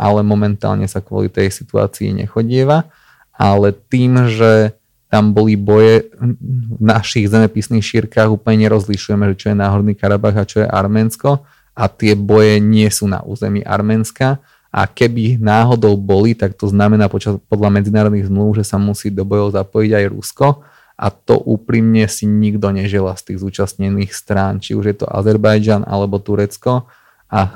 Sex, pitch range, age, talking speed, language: male, 100-115 Hz, 30-49, 155 wpm, Slovak